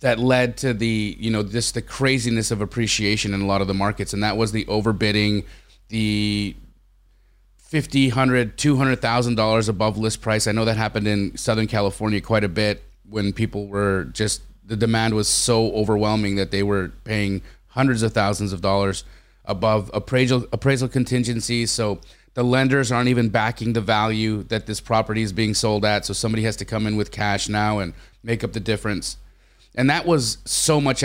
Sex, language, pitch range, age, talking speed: male, English, 100-120 Hz, 30-49, 190 wpm